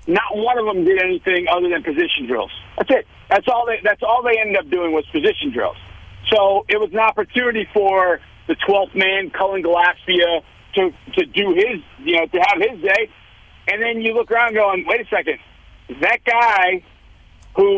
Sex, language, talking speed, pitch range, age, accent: male, English, 185 wpm, 190-270 Hz, 50-69, American